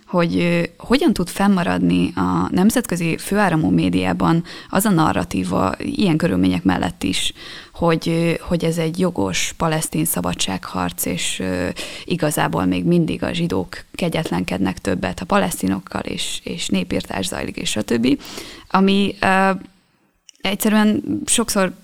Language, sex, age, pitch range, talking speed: Hungarian, female, 20-39, 150-180 Hz, 125 wpm